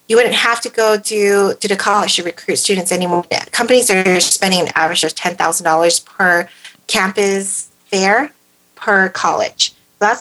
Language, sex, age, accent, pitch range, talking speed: English, female, 30-49, American, 170-200 Hz, 155 wpm